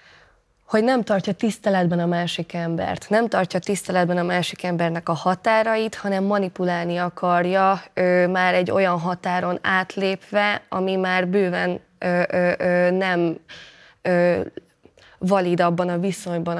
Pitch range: 175-200 Hz